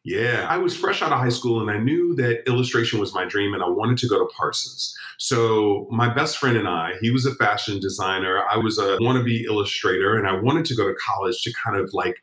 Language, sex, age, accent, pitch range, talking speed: English, male, 40-59, American, 105-130 Hz, 245 wpm